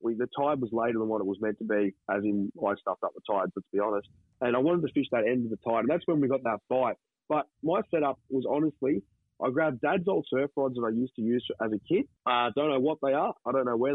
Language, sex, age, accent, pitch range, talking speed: English, male, 30-49, Australian, 115-155 Hz, 295 wpm